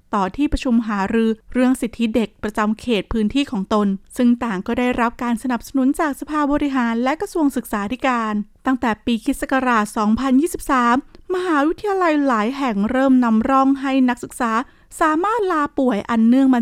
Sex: female